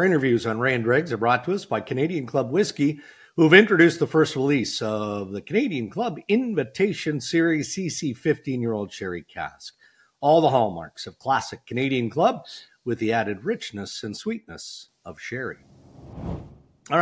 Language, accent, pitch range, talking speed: English, American, 115-150 Hz, 160 wpm